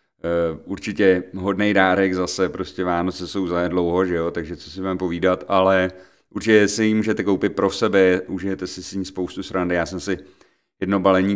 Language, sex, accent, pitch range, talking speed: Czech, male, native, 90-115 Hz, 190 wpm